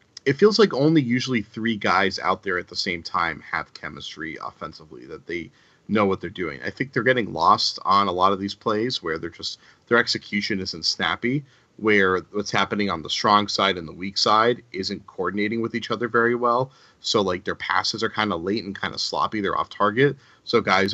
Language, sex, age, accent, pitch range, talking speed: English, male, 30-49, American, 95-125 Hz, 215 wpm